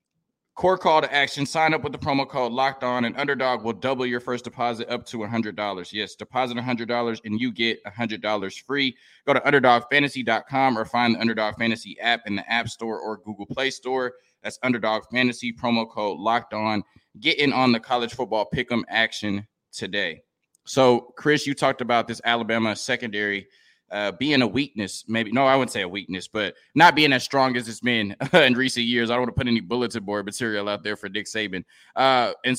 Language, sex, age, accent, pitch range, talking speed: English, male, 20-39, American, 110-130 Hz, 215 wpm